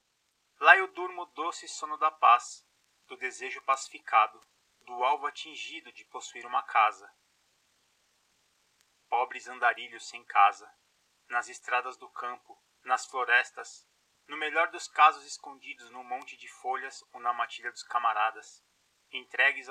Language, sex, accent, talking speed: Portuguese, male, Brazilian, 130 wpm